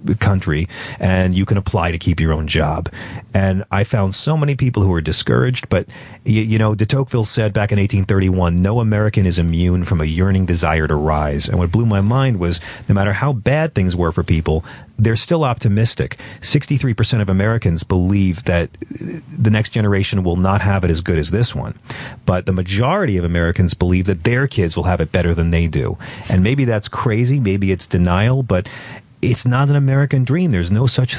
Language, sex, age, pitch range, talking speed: English, male, 40-59, 90-120 Hz, 205 wpm